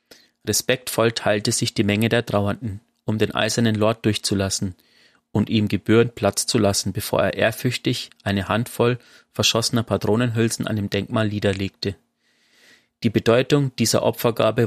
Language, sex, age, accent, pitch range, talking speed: German, male, 30-49, German, 100-120 Hz, 135 wpm